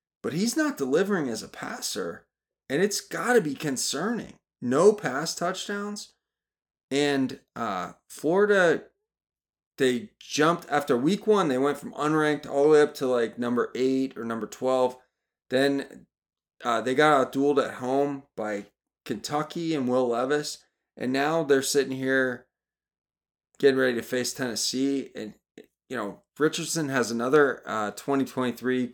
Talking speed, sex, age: 145 wpm, male, 30-49